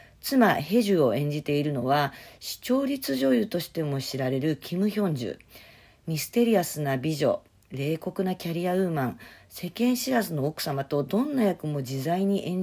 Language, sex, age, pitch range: Japanese, female, 50-69, 145-220 Hz